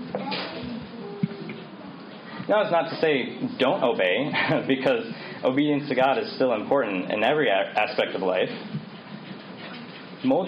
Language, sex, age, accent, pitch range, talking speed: English, male, 20-39, American, 135-180 Hz, 115 wpm